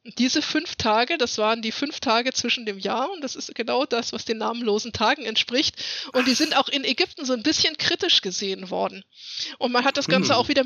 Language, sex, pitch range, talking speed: German, female, 225-275 Hz, 225 wpm